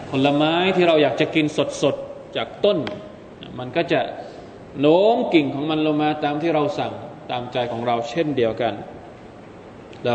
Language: Thai